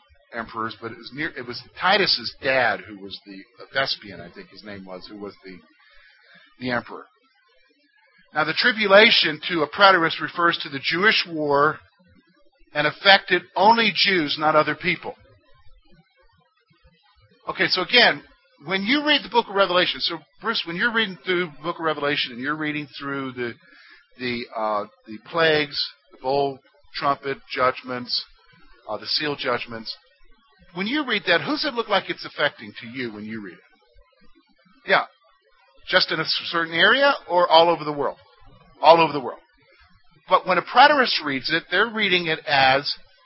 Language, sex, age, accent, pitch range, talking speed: English, male, 50-69, American, 140-195 Hz, 165 wpm